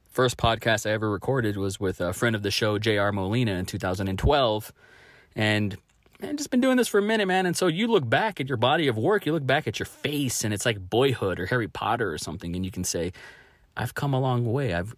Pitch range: 95-130 Hz